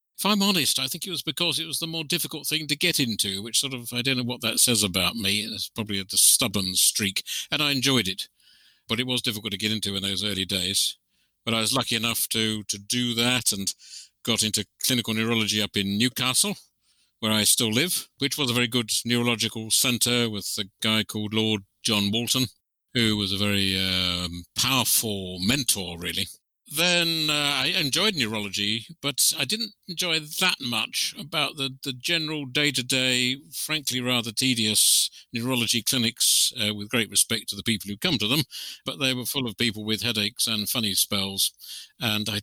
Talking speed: 190 wpm